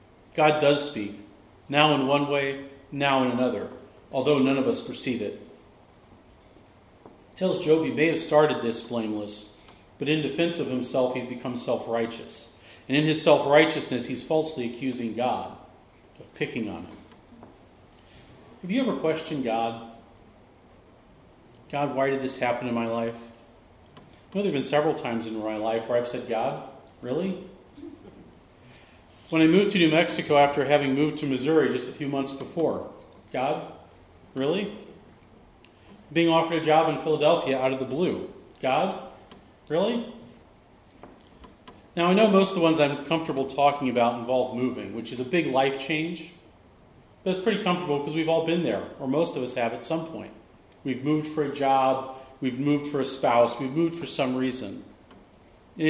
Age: 40-59